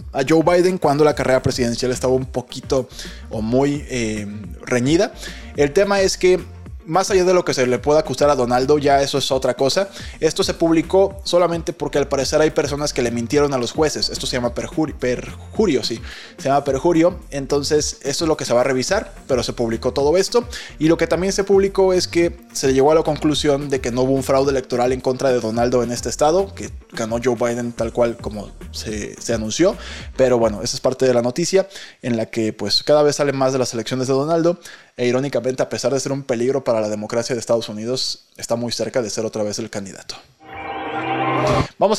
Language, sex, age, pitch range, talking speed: Spanish, male, 20-39, 120-155 Hz, 220 wpm